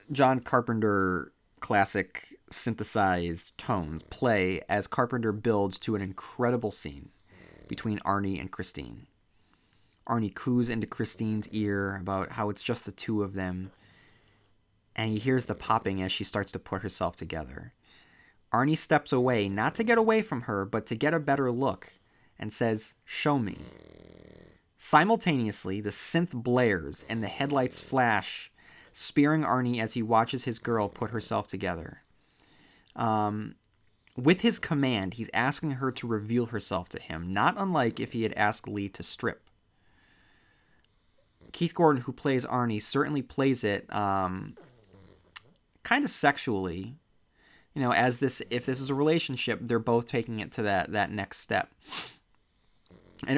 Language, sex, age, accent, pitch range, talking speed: English, male, 30-49, American, 100-130 Hz, 145 wpm